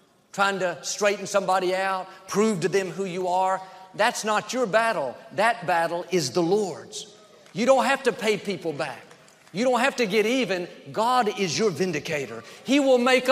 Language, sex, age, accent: English, male, 50-69, American